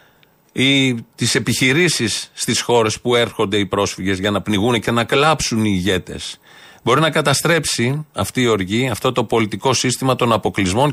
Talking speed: 160 wpm